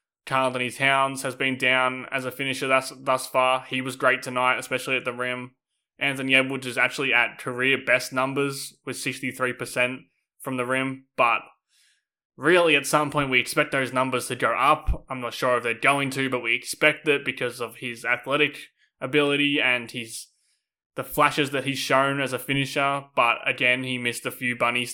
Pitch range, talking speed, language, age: 125-140 Hz, 185 wpm, English, 20-39